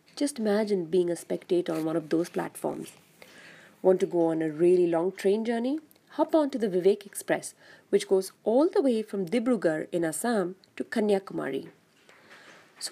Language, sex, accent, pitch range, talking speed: English, female, Indian, 175-250 Hz, 170 wpm